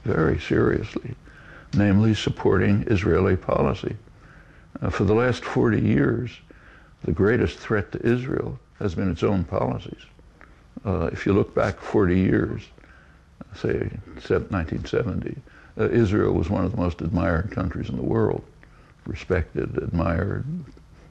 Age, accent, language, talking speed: 60-79, American, English, 130 wpm